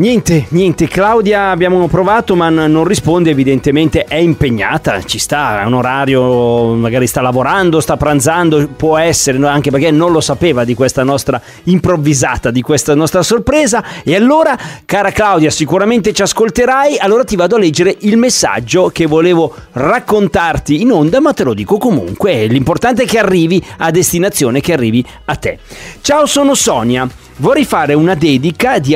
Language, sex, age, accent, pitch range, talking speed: Italian, male, 30-49, native, 145-215 Hz, 160 wpm